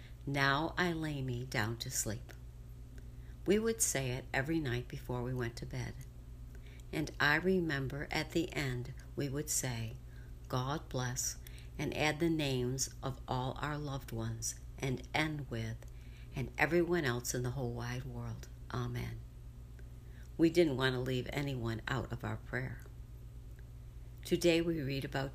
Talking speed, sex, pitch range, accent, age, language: 150 wpm, female, 110-145 Hz, American, 60-79, English